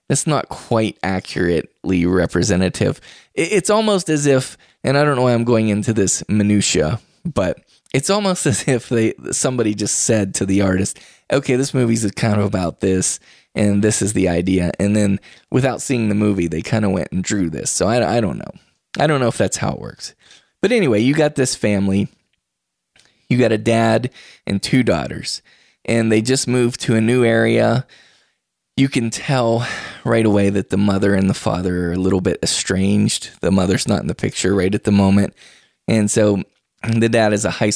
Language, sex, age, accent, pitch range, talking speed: English, male, 20-39, American, 95-120 Hz, 195 wpm